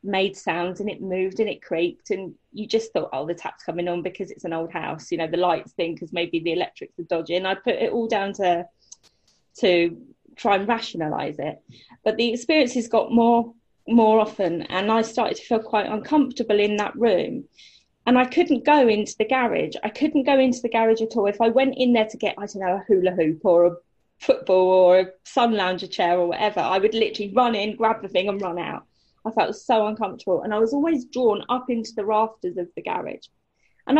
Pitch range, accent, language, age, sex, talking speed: 185-245 Hz, British, English, 20-39, female, 225 wpm